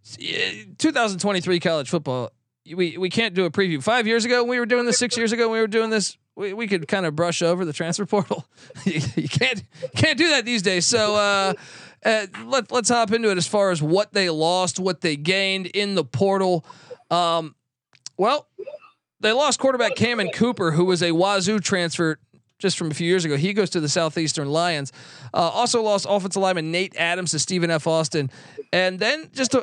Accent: American